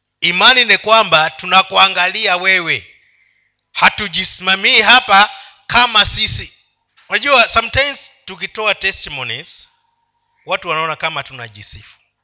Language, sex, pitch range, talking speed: Swahili, male, 135-200 Hz, 85 wpm